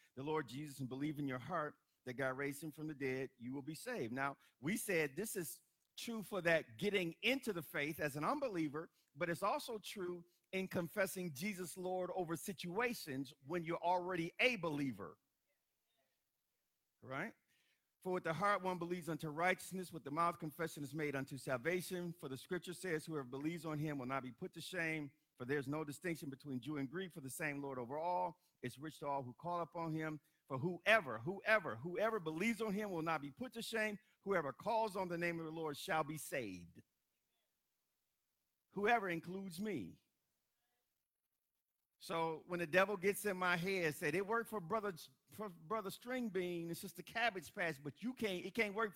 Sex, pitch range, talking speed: male, 155-195 Hz, 190 wpm